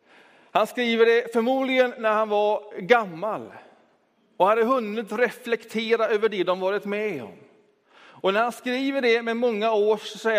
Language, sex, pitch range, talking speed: Swedish, male, 190-235 Hz, 150 wpm